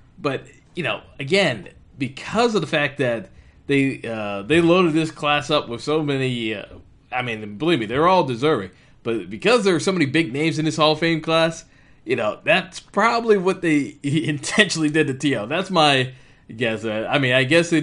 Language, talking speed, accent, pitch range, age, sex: English, 200 wpm, American, 115-155 Hz, 20-39, male